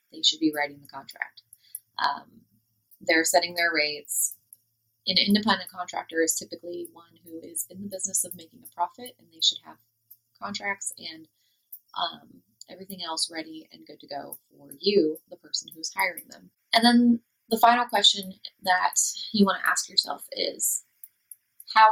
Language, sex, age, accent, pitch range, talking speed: English, female, 20-39, American, 165-200 Hz, 165 wpm